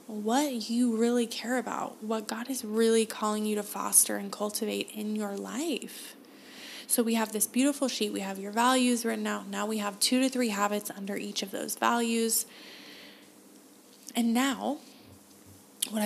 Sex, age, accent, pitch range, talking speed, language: female, 20-39, American, 210-255 Hz, 170 wpm, English